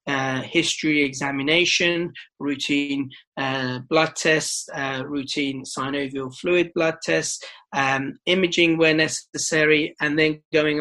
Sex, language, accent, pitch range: male, English, British, 140-165 Hz